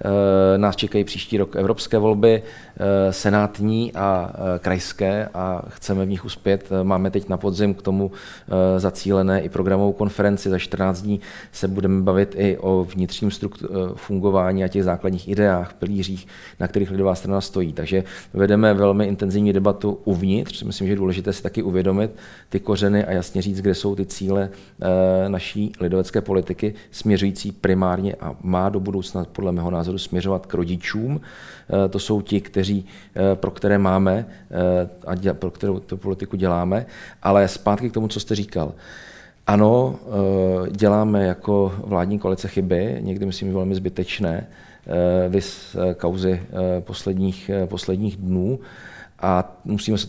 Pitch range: 95-100 Hz